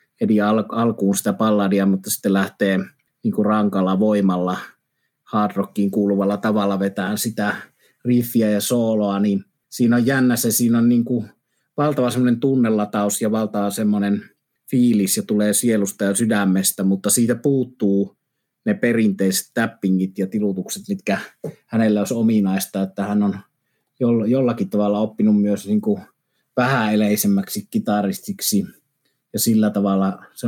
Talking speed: 130 wpm